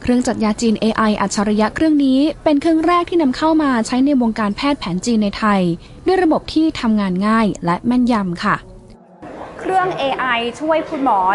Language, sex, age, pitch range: Thai, female, 20-39, 215-300 Hz